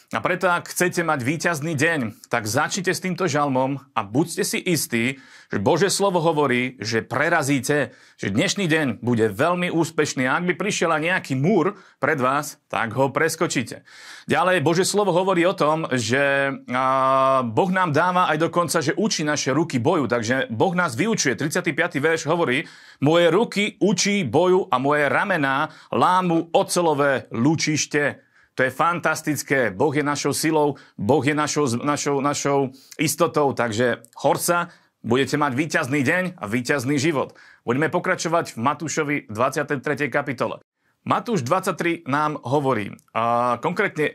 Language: Slovak